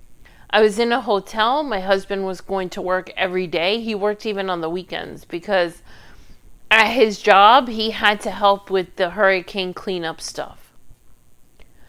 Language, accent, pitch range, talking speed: English, American, 175-215 Hz, 160 wpm